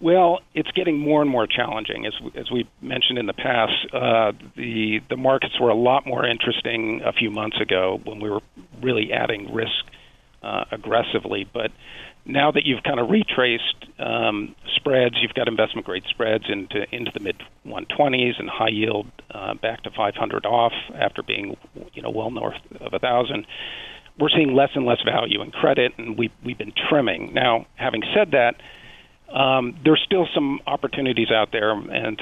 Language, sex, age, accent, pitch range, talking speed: English, male, 50-69, American, 115-135 Hz, 185 wpm